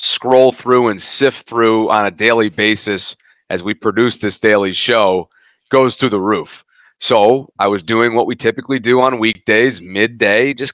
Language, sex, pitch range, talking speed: English, male, 105-125 Hz, 175 wpm